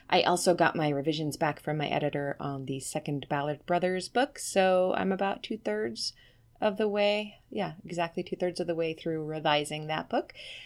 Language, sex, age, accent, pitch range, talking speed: English, female, 30-49, American, 135-180 Hz, 180 wpm